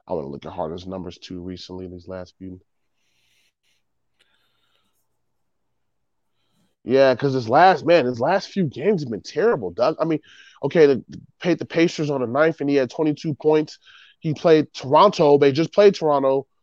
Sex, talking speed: male, 175 wpm